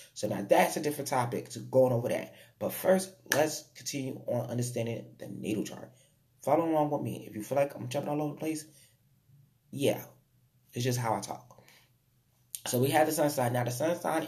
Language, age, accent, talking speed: English, 20-39, American, 205 wpm